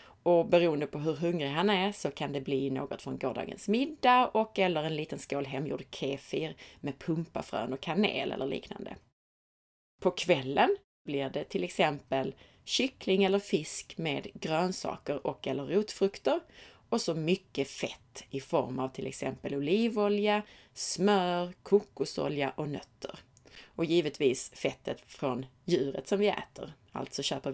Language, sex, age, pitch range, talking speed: Swedish, female, 30-49, 140-200 Hz, 145 wpm